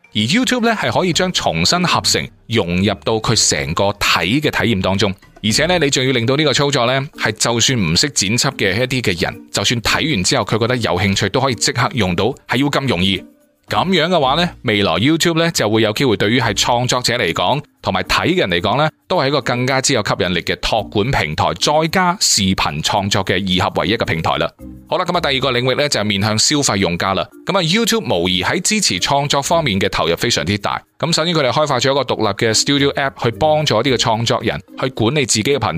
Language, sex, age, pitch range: Chinese, male, 20-39, 105-145 Hz